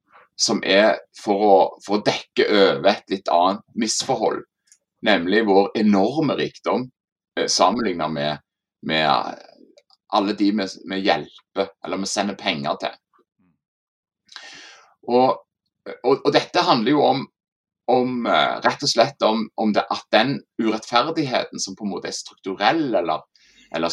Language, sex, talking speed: English, male, 120 wpm